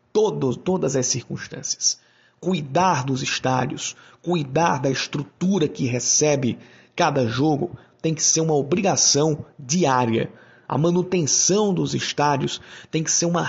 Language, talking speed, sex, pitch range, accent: Portuguese, 120 wpm, male, 135-170 Hz, Brazilian